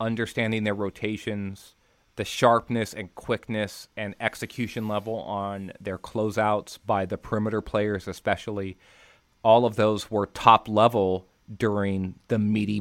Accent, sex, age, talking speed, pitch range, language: American, male, 30-49, 125 wpm, 100-115 Hz, English